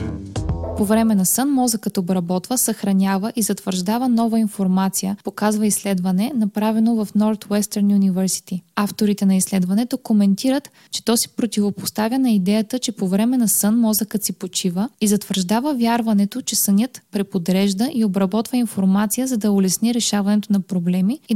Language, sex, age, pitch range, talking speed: Bulgarian, female, 20-39, 195-230 Hz, 145 wpm